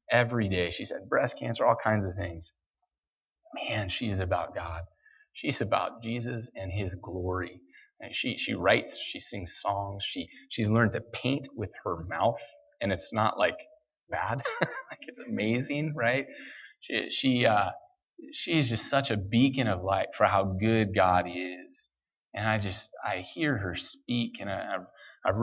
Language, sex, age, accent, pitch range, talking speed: English, male, 30-49, American, 95-120 Hz, 165 wpm